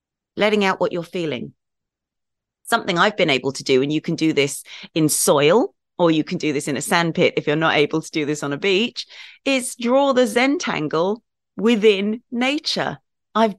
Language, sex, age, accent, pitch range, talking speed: English, female, 30-49, British, 180-260 Hz, 190 wpm